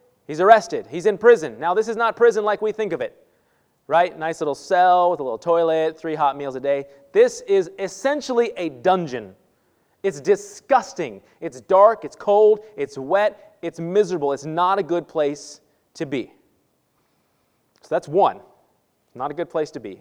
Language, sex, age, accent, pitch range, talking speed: English, male, 30-49, American, 150-220 Hz, 175 wpm